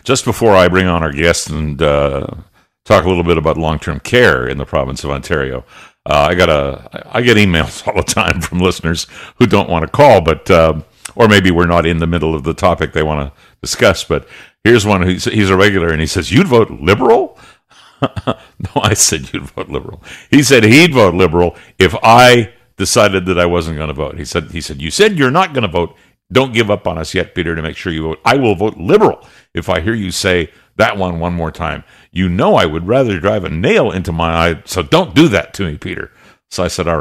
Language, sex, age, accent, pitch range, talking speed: English, male, 60-79, American, 80-100 Hz, 235 wpm